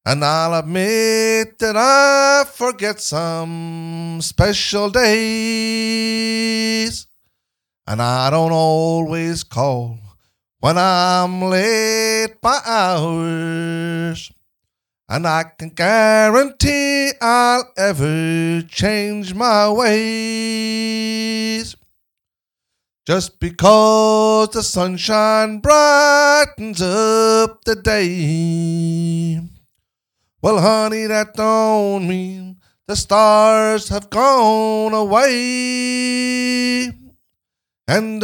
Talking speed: 75 wpm